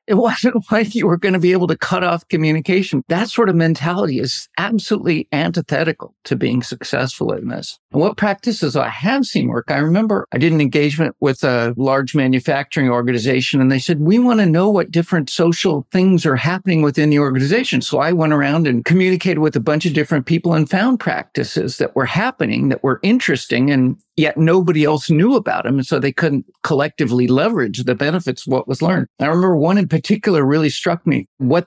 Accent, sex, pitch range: American, male, 140-185 Hz